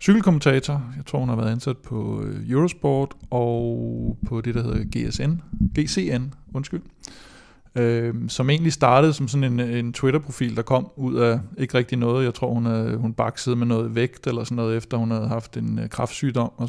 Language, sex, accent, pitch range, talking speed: Danish, male, native, 115-135 Hz, 185 wpm